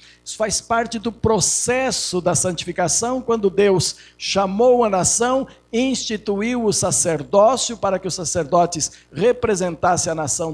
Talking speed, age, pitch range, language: 125 wpm, 60-79, 165-220 Hz, Portuguese